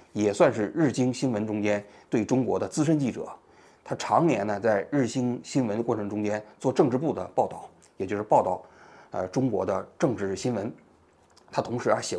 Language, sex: Chinese, male